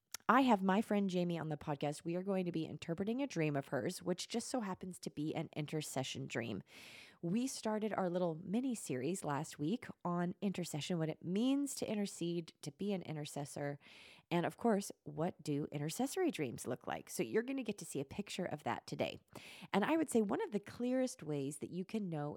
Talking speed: 215 wpm